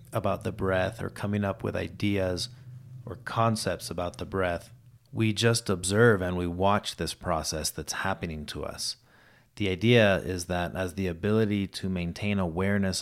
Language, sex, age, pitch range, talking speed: English, male, 30-49, 90-110 Hz, 160 wpm